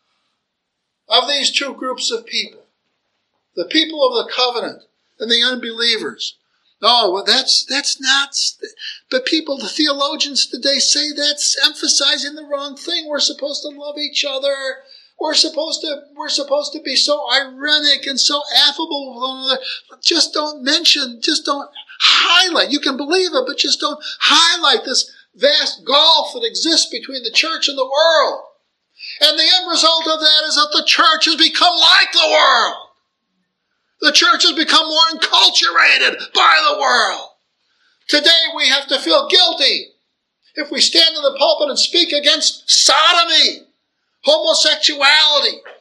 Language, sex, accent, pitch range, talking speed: English, male, American, 280-330 Hz, 155 wpm